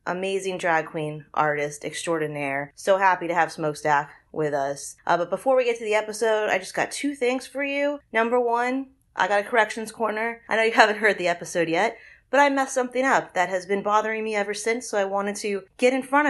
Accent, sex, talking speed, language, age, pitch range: American, female, 225 wpm, English, 30-49, 165-215 Hz